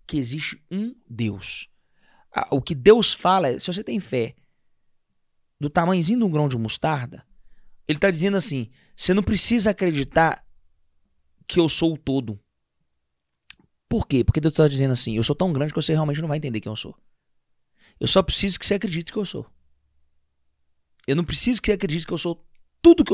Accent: Brazilian